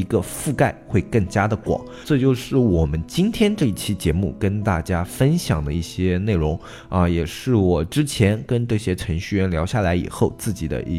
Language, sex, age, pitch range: Chinese, male, 20-39, 85-120 Hz